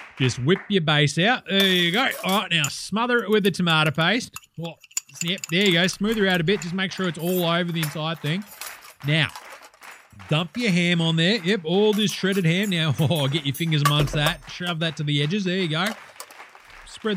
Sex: male